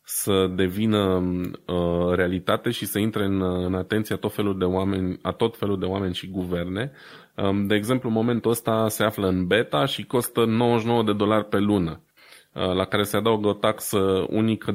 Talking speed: 160 wpm